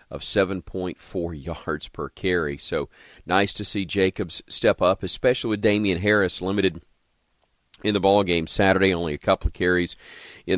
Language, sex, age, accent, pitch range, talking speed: English, male, 40-59, American, 80-95 Hz, 160 wpm